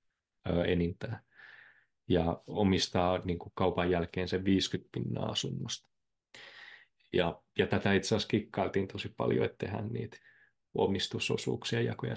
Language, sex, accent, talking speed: Finnish, male, native, 115 wpm